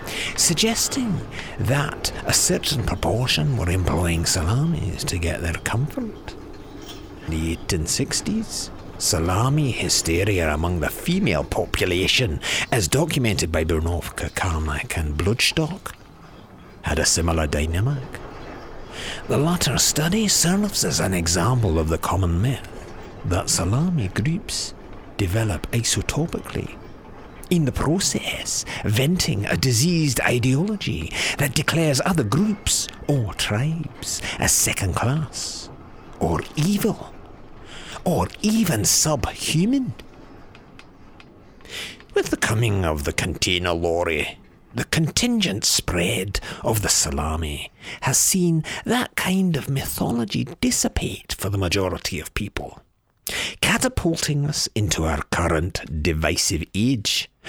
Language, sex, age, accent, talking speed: English, male, 60-79, British, 105 wpm